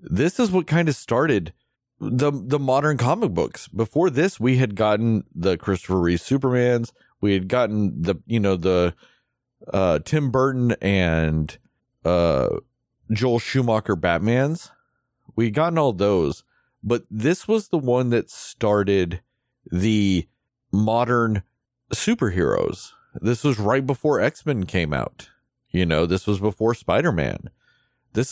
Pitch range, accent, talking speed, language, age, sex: 100-130 Hz, American, 135 wpm, English, 40-59, male